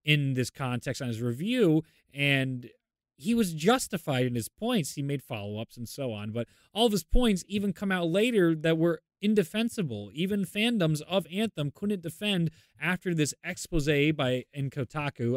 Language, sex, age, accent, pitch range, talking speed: English, male, 20-39, American, 115-165 Hz, 170 wpm